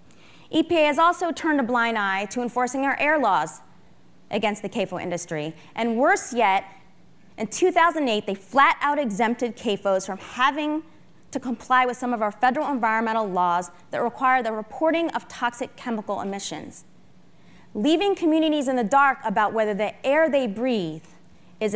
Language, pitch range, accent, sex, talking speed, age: English, 195-255 Hz, American, female, 155 wpm, 30-49